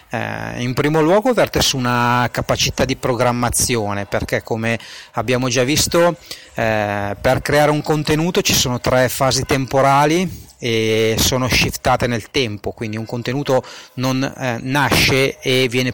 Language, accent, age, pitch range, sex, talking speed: Italian, native, 30-49, 110-145 Hz, male, 145 wpm